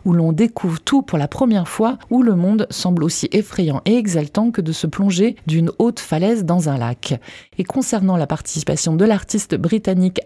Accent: French